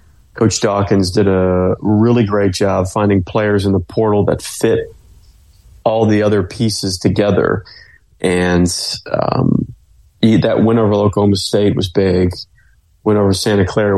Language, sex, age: English, male, 30-49